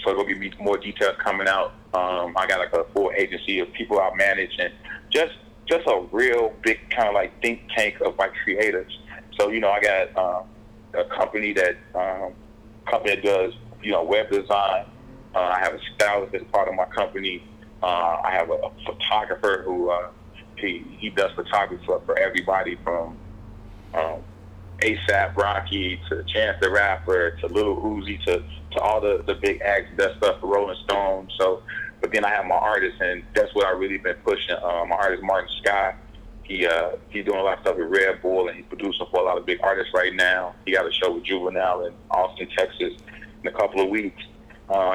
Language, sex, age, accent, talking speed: English, male, 30-49, American, 205 wpm